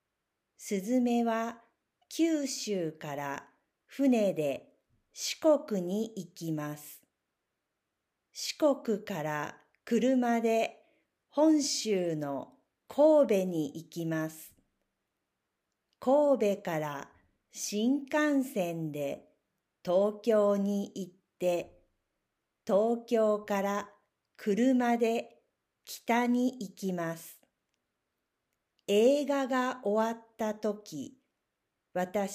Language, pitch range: Japanese, 180-250 Hz